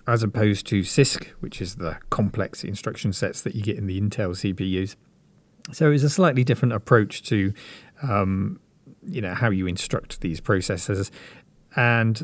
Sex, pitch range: male, 95-125 Hz